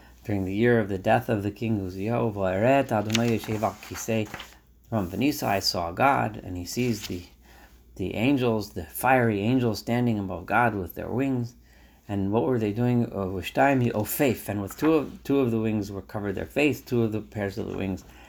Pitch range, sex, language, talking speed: 100-130 Hz, male, English, 195 wpm